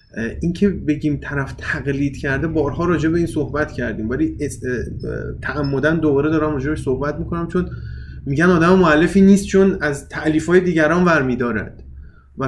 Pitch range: 115-155 Hz